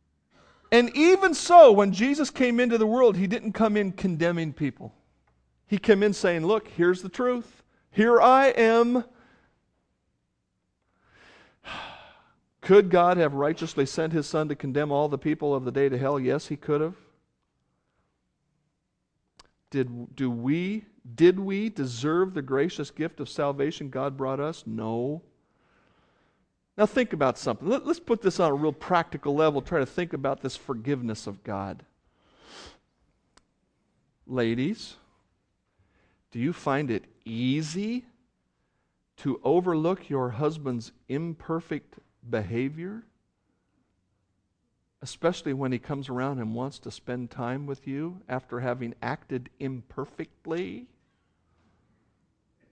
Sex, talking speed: male, 125 wpm